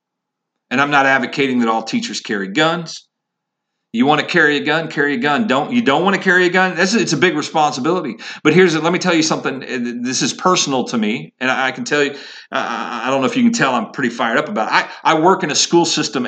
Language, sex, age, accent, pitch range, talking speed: English, male, 50-69, American, 145-205 Hz, 250 wpm